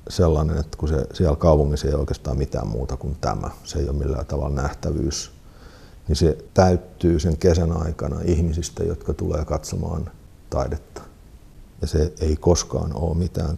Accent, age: native, 50-69